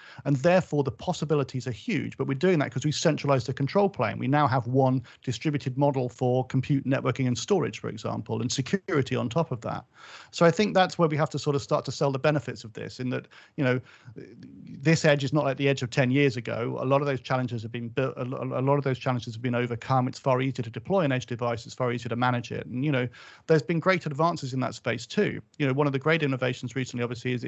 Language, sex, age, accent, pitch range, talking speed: English, male, 40-59, British, 125-145 Hz, 260 wpm